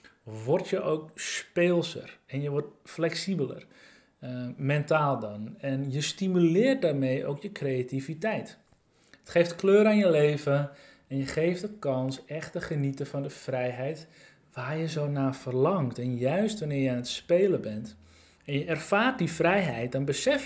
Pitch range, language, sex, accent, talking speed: 130-175 Hz, Dutch, male, Dutch, 160 wpm